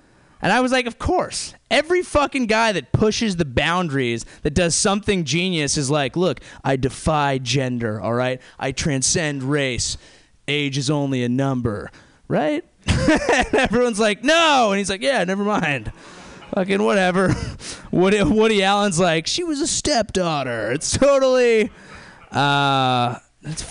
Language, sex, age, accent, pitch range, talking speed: English, male, 20-39, American, 135-200 Hz, 145 wpm